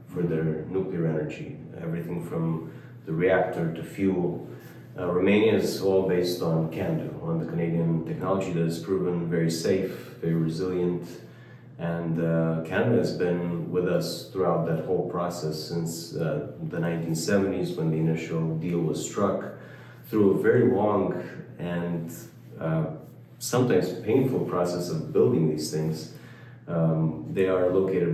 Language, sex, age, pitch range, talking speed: English, male, 30-49, 80-90 Hz, 140 wpm